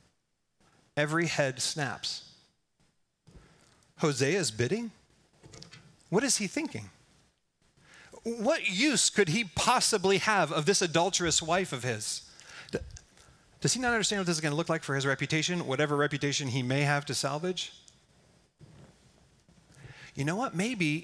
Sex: male